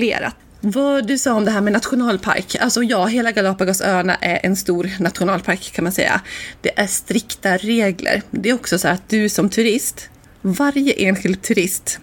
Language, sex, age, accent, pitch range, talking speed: Swedish, female, 30-49, native, 180-220 Hz, 170 wpm